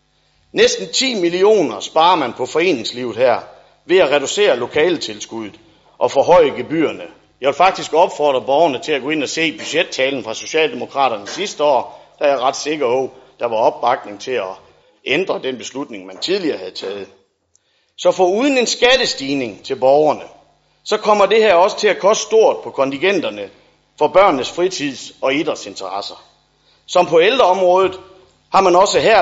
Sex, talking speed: male, 165 wpm